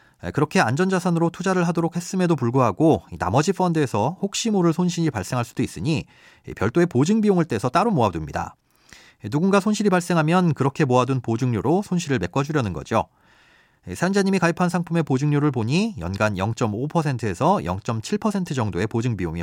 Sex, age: male, 40-59